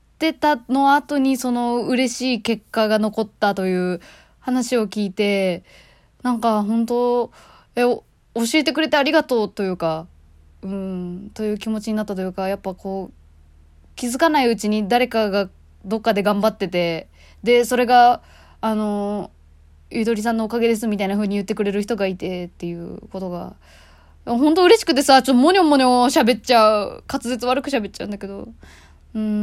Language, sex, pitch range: Japanese, female, 195-240 Hz